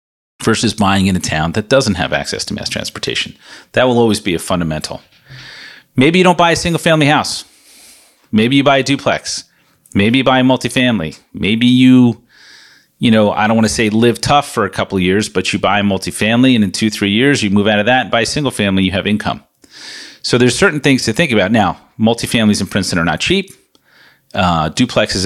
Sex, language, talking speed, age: male, English, 215 wpm, 40-59